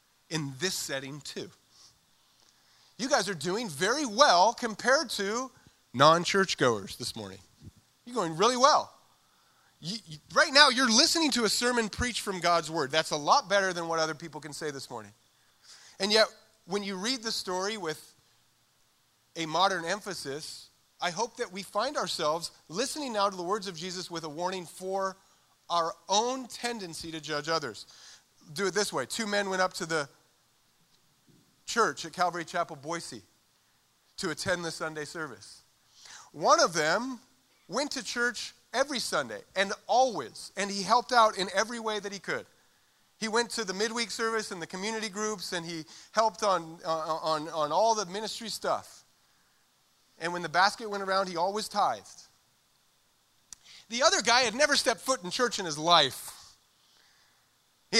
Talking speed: 165 wpm